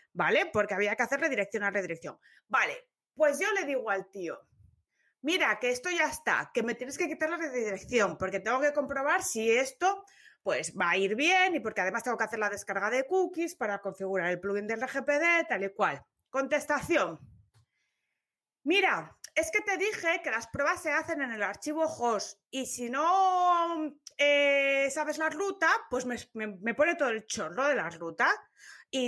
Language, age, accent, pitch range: Spanish, 30-49, Spanish, 235-330 Hz